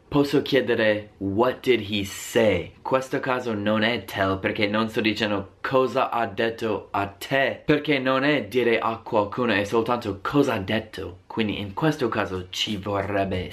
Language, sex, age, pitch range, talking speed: Italian, male, 20-39, 100-125 Hz, 170 wpm